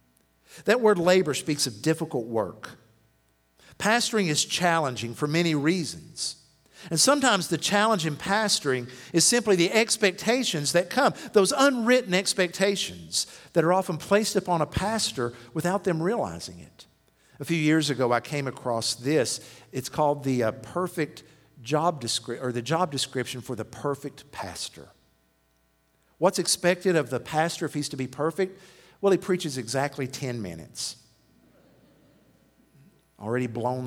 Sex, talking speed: male, 140 wpm